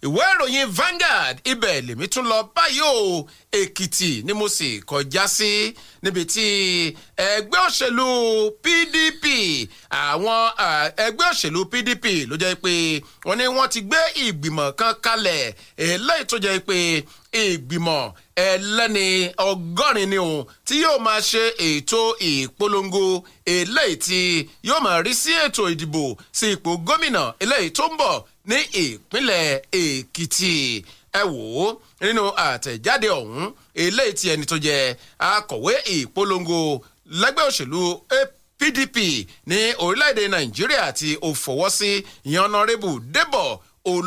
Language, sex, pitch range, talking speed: English, male, 160-240 Hz, 145 wpm